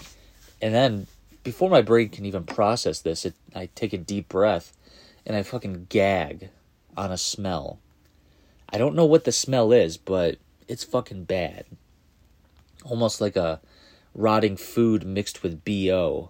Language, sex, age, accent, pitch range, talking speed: English, male, 30-49, American, 80-110 Hz, 155 wpm